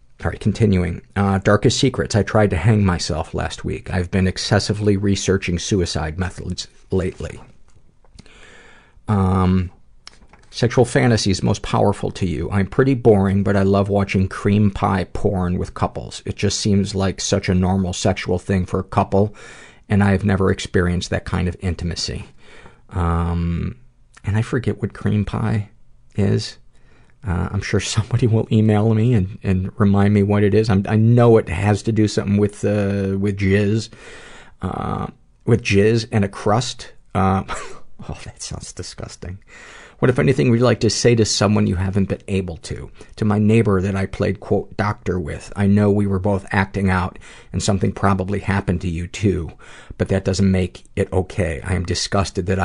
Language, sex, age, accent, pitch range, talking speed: English, male, 50-69, American, 95-105 Hz, 170 wpm